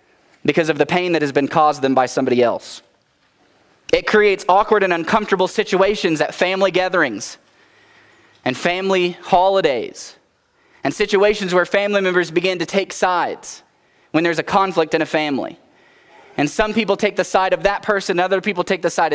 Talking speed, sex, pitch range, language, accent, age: 170 wpm, male, 170-215 Hz, English, American, 20-39